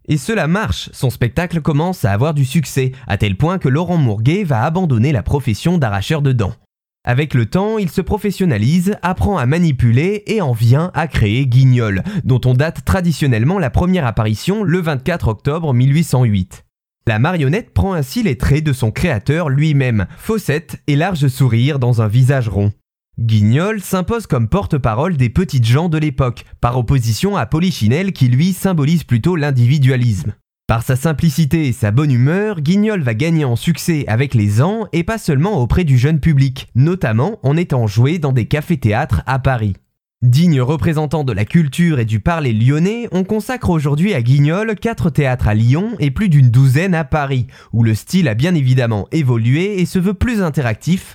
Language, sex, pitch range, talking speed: French, male, 125-170 Hz, 180 wpm